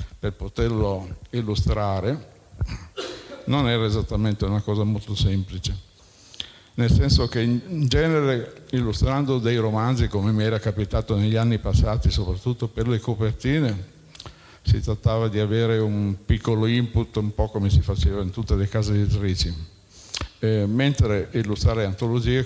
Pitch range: 95-115 Hz